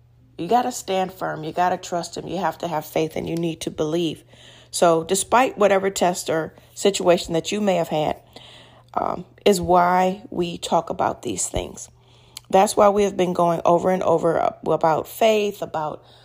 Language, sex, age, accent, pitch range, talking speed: English, female, 40-59, American, 170-195 Hz, 190 wpm